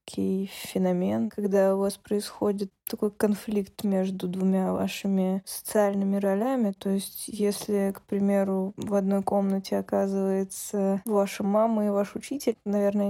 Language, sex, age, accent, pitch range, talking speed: Russian, female, 20-39, native, 190-205 Hz, 125 wpm